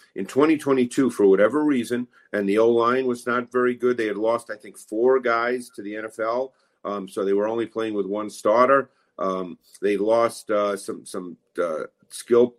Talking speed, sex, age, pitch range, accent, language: 185 wpm, male, 50-69, 110-130 Hz, American, English